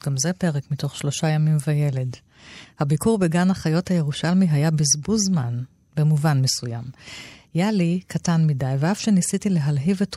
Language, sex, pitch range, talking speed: Hebrew, female, 145-185 Hz, 135 wpm